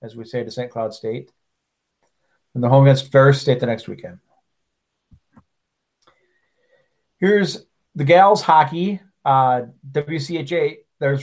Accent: American